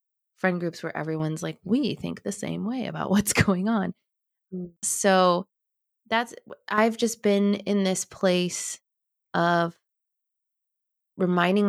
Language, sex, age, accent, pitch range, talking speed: English, female, 20-39, American, 165-200 Hz, 125 wpm